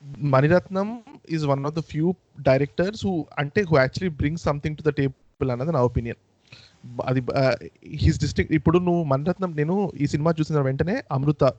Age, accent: 20-39, native